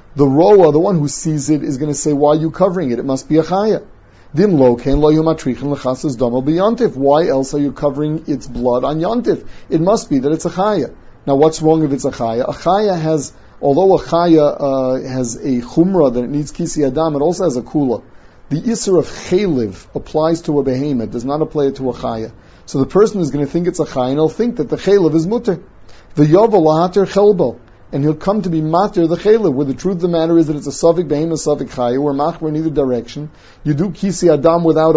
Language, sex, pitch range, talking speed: English, male, 130-165 Hz, 225 wpm